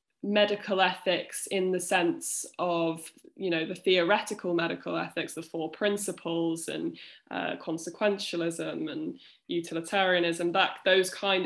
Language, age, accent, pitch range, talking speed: English, 10-29, British, 175-215 Hz, 120 wpm